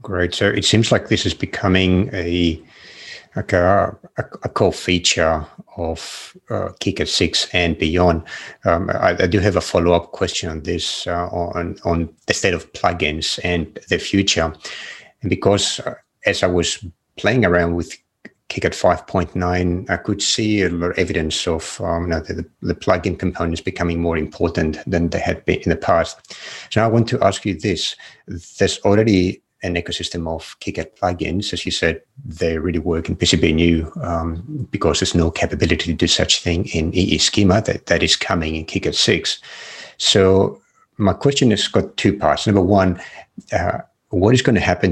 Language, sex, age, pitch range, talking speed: English, male, 60-79, 85-95 Hz, 180 wpm